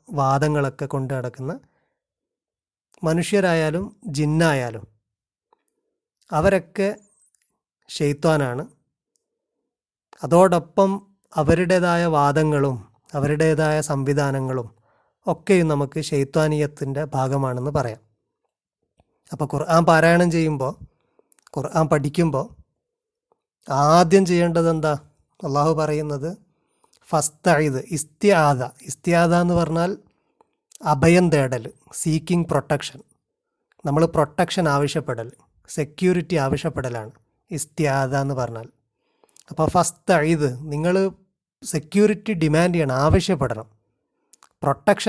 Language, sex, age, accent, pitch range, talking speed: Malayalam, male, 30-49, native, 140-180 Hz, 75 wpm